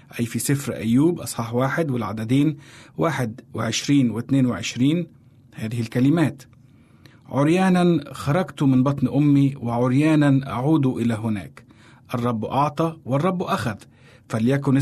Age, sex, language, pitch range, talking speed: 50-69, male, Arabic, 125-150 Hz, 110 wpm